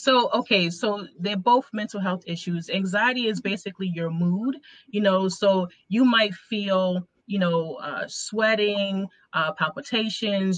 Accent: American